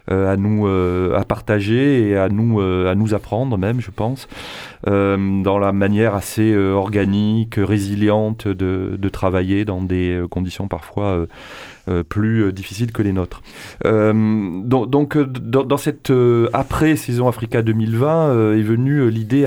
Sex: male